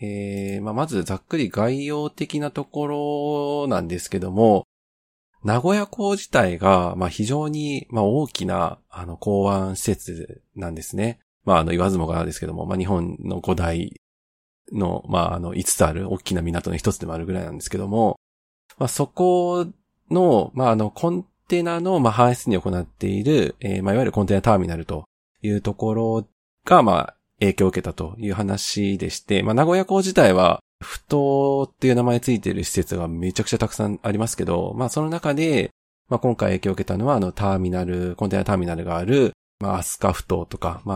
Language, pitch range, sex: Japanese, 90-120 Hz, male